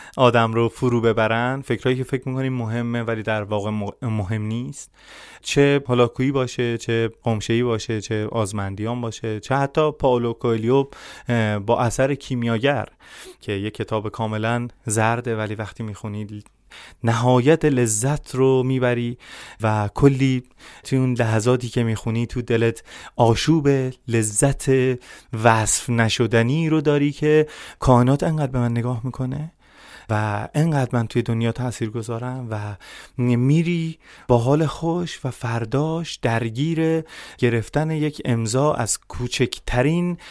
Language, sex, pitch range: Persian, male, 115-140 Hz